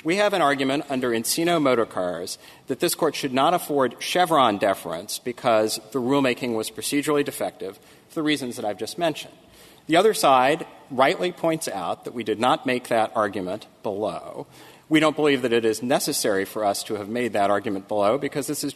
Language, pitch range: English, 110-150 Hz